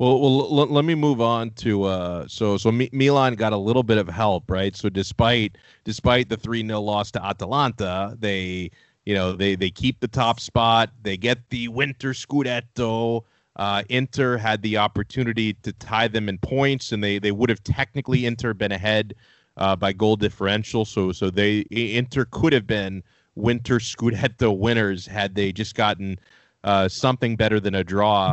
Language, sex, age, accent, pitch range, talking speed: English, male, 30-49, American, 100-120 Hz, 180 wpm